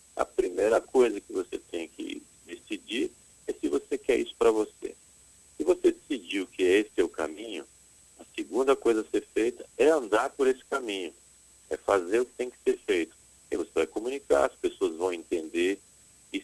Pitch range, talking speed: 345-415 Hz, 190 wpm